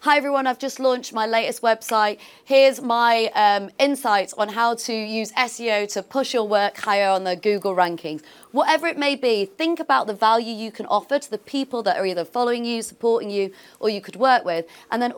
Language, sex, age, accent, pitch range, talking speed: English, female, 30-49, British, 185-255 Hz, 215 wpm